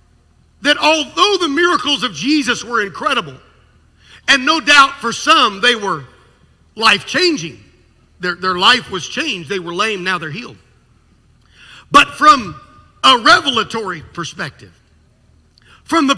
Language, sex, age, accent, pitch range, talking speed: English, male, 50-69, American, 220-295 Hz, 120 wpm